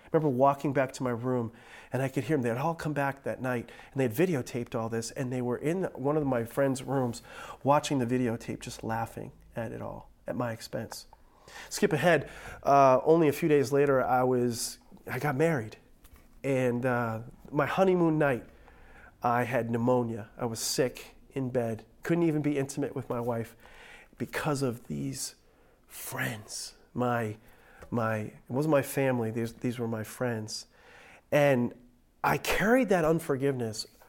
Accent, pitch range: American, 115-145 Hz